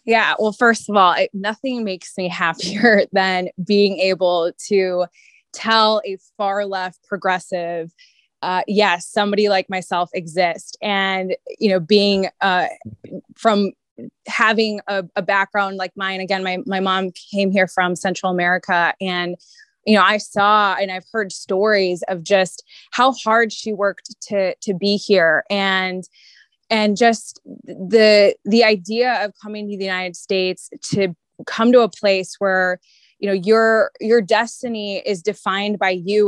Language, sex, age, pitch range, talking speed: English, female, 20-39, 185-210 Hz, 150 wpm